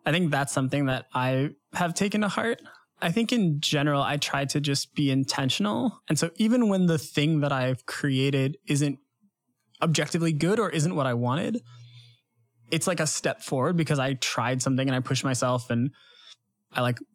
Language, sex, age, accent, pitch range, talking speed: English, male, 20-39, American, 130-160 Hz, 185 wpm